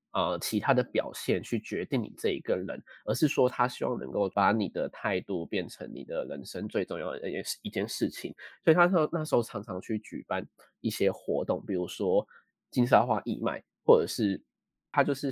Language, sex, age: Chinese, male, 20-39